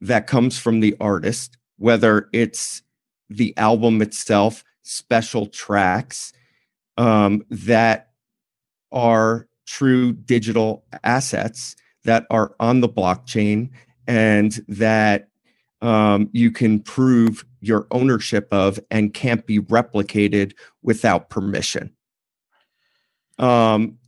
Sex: male